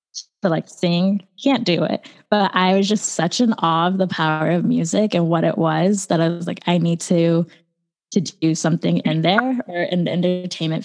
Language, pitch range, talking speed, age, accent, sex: English, 170-200 Hz, 210 wpm, 10-29, American, female